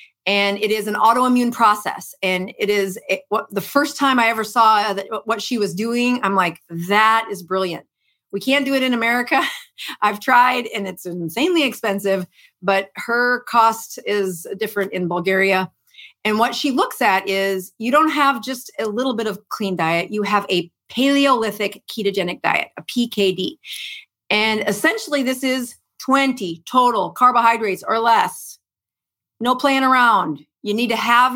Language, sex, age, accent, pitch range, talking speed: English, female, 40-59, American, 205-255 Hz, 160 wpm